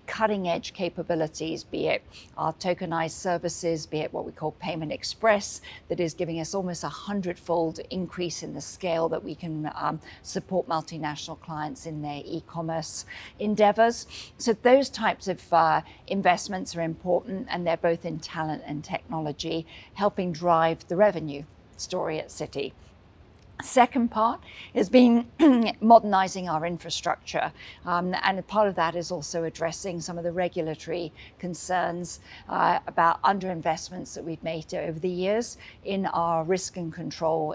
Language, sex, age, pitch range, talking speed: English, female, 50-69, 160-195 Hz, 150 wpm